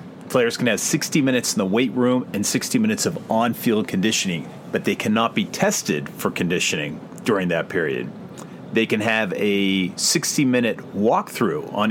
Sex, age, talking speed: male, 40-59, 160 wpm